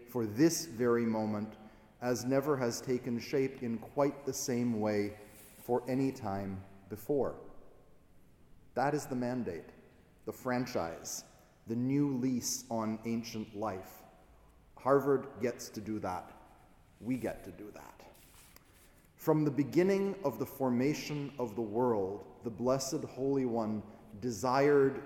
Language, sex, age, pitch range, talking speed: English, male, 30-49, 110-140 Hz, 130 wpm